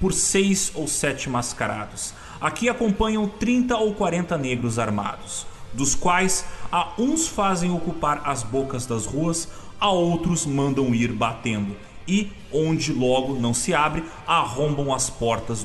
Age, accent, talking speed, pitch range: 30-49, Brazilian, 140 wpm, 120-195 Hz